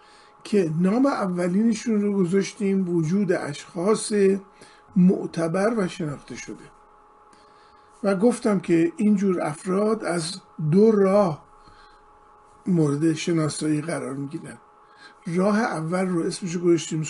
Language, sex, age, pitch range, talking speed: Persian, male, 50-69, 170-215 Hz, 100 wpm